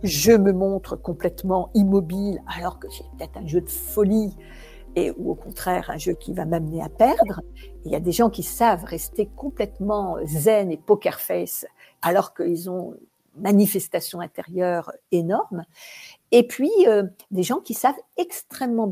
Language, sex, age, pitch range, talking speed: French, female, 60-79, 180-255 Hz, 165 wpm